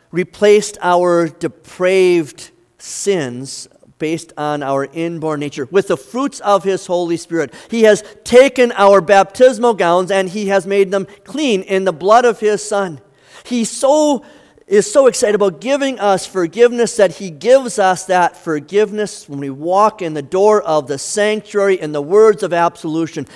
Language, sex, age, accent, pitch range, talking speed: English, male, 50-69, American, 165-210 Hz, 160 wpm